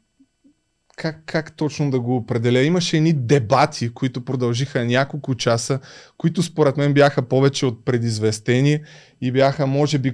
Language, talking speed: Bulgarian, 140 wpm